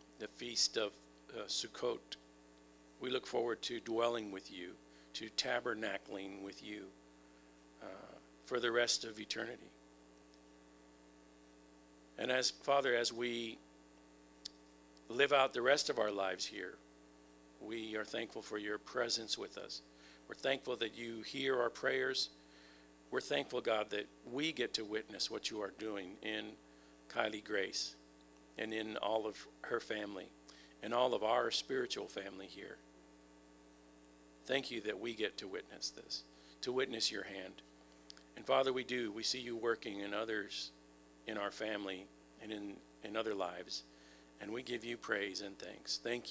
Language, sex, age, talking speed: English, male, 50-69, 150 wpm